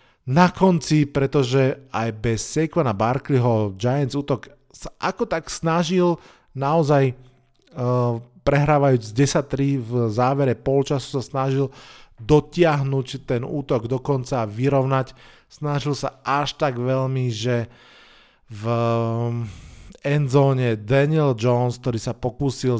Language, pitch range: Slovak, 115-135 Hz